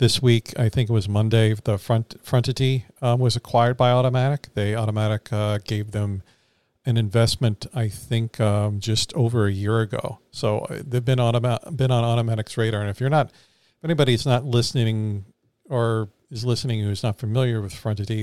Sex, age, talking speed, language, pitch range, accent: male, 50-69, 180 wpm, English, 105-125 Hz, American